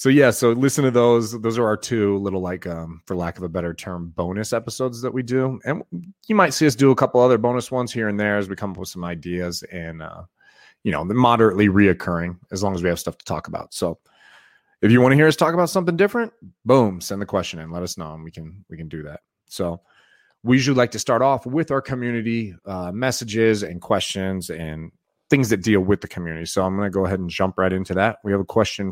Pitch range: 95-125 Hz